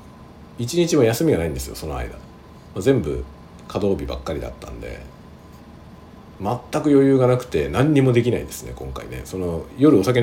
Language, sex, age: Japanese, male, 50-69